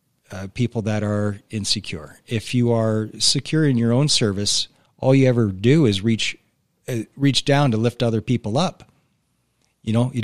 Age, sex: 40-59, male